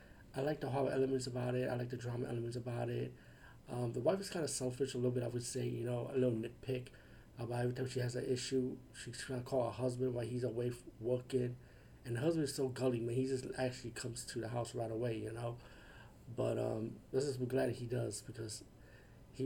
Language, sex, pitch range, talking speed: English, male, 115-130 Hz, 240 wpm